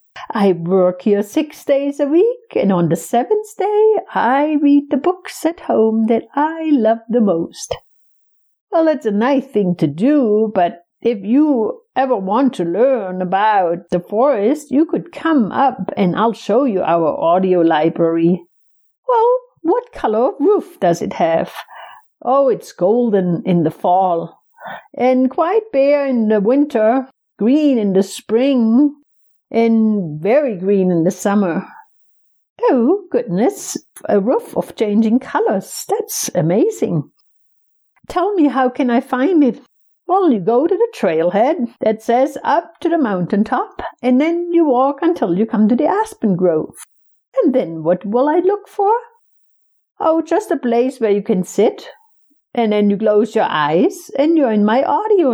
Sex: female